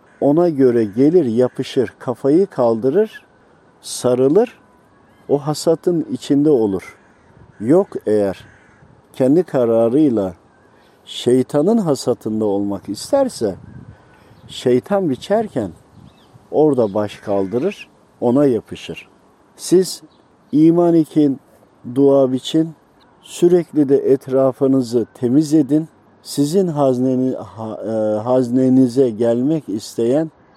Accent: native